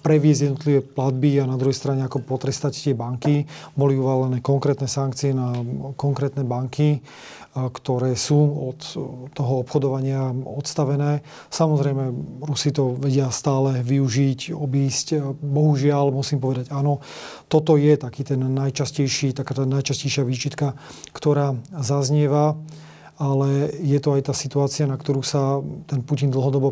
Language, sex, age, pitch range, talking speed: Slovak, male, 40-59, 135-150 Hz, 130 wpm